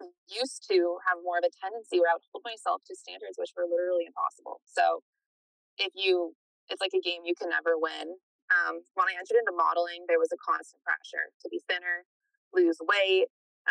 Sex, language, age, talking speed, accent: female, English, 20-39, 195 wpm, American